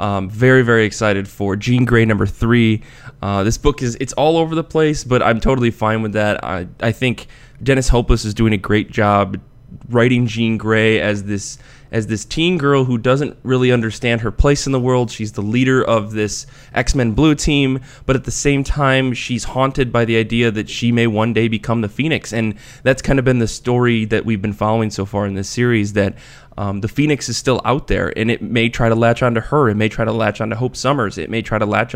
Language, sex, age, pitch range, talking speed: English, male, 20-39, 110-130 Hz, 230 wpm